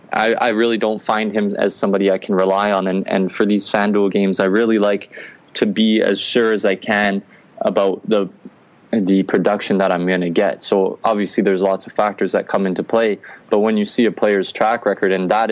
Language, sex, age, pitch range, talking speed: English, male, 20-39, 95-110 Hz, 220 wpm